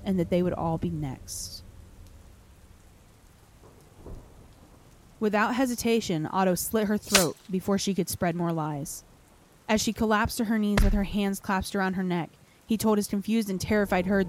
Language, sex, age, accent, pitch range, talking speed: English, female, 20-39, American, 170-200 Hz, 165 wpm